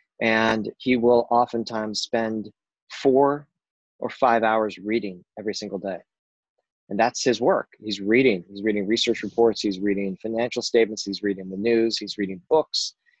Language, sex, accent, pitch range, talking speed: English, male, American, 105-120 Hz, 155 wpm